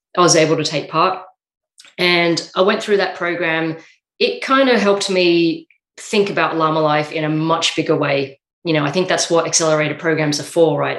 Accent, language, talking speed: Australian, English, 200 wpm